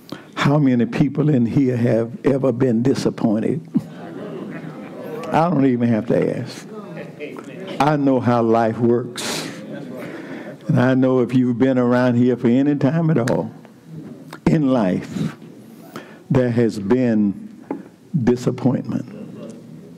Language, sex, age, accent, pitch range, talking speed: English, male, 60-79, American, 125-160 Hz, 115 wpm